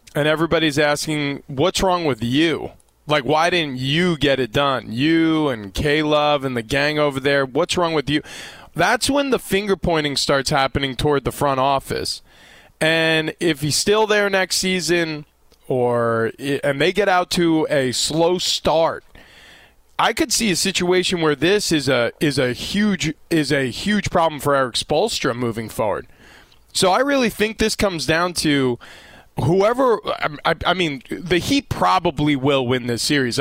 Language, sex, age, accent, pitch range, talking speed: English, male, 20-39, American, 140-180 Hz, 170 wpm